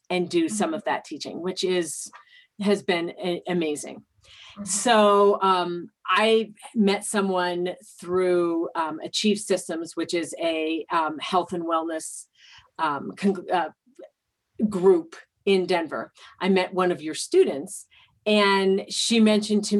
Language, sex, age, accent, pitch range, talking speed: English, female, 40-59, American, 170-200 Hz, 125 wpm